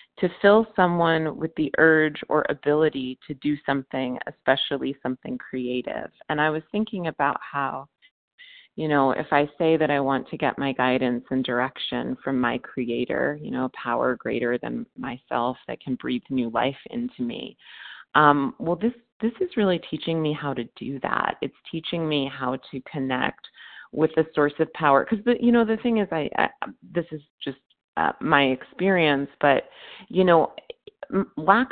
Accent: American